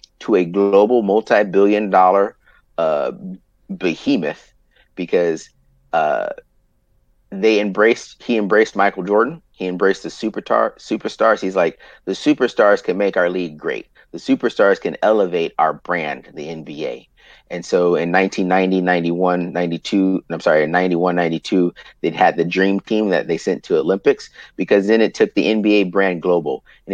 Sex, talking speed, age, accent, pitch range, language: male, 155 wpm, 30-49, American, 90-105 Hz, English